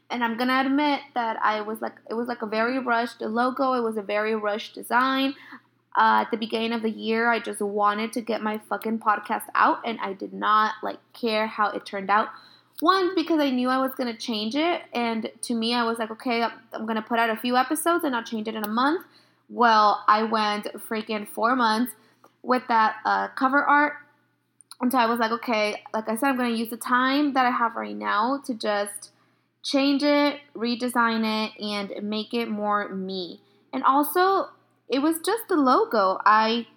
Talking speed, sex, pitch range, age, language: 210 wpm, female, 220-275 Hz, 20-39, English